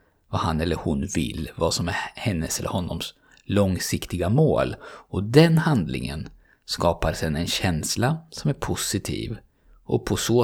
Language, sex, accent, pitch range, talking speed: Swedish, male, native, 90-125 Hz, 150 wpm